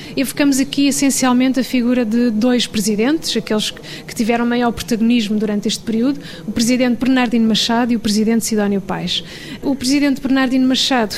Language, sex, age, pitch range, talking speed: Portuguese, female, 20-39, 215-250 Hz, 160 wpm